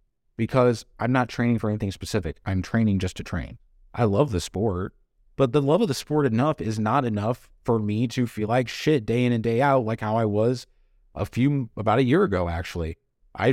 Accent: American